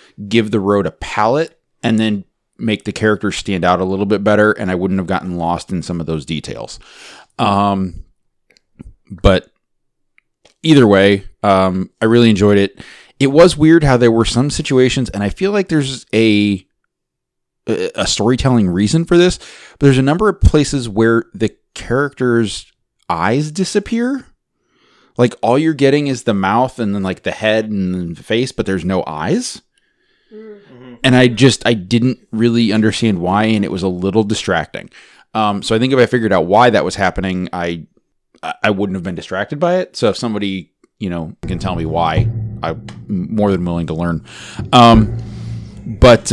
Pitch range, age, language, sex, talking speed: 95-125 Hz, 30-49, English, male, 175 wpm